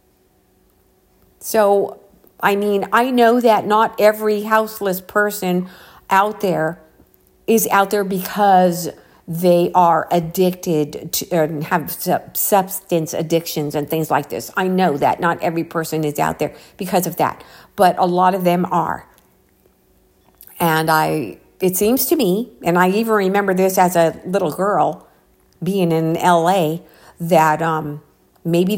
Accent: American